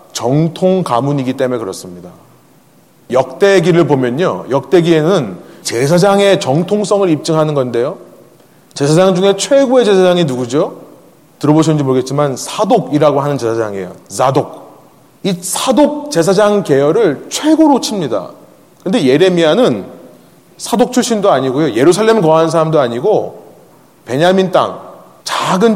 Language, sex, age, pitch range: Korean, male, 30-49, 145-200 Hz